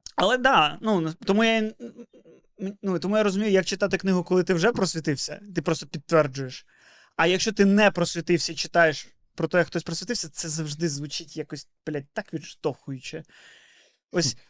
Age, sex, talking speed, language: 20-39, male, 160 wpm, Ukrainian